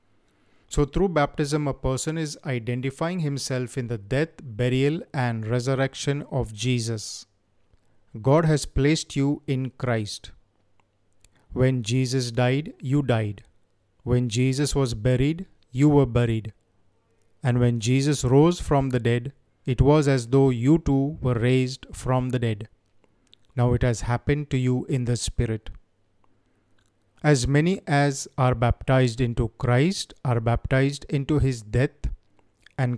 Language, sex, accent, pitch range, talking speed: Hindi, male, native, 110-140 Hz, 135 wpm